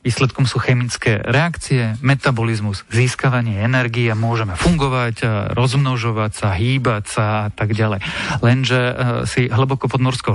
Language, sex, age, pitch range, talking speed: Slovak, male, 40-59, 115-135 Hz, 120 wpm